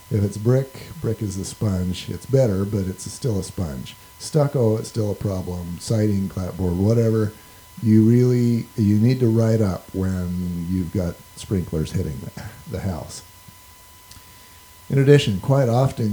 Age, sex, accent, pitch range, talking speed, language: 50-69, male, American, 90-115 Hz, 150 wpm, English